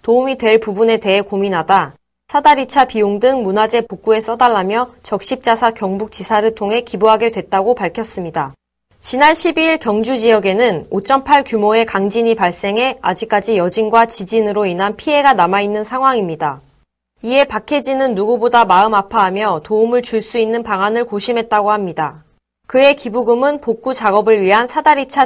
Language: Korean